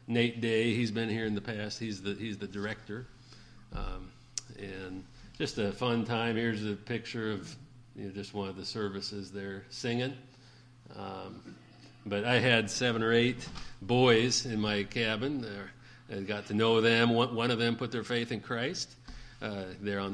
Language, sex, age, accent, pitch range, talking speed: English, male, 40-59, American, 100-120 Hz, 190 wpm